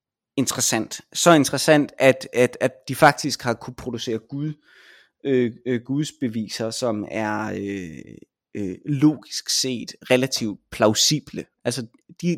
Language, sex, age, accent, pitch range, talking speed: Danish, male, 20-39, native, 120-155 Hz, 125 wpm